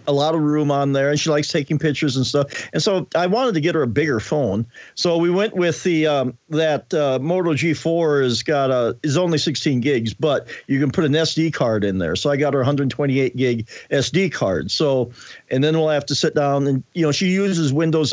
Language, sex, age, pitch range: English, male, 50-69, 130-160 Hz